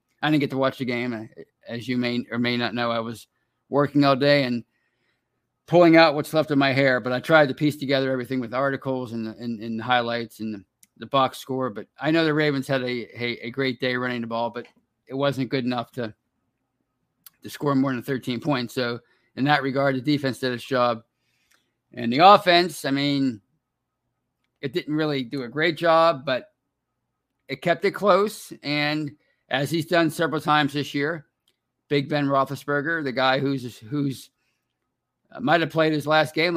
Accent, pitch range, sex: American, 125-150 Hz, male